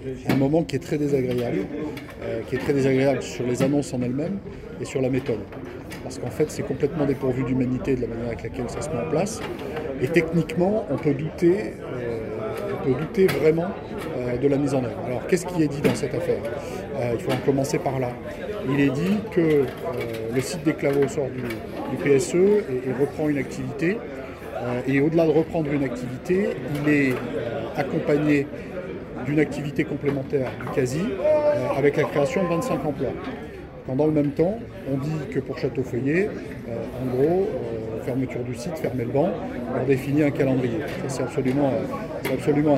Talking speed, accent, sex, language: 190 wpm, French, male, French